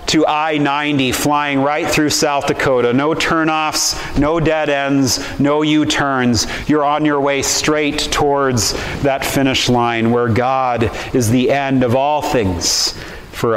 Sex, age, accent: male, 40-59, American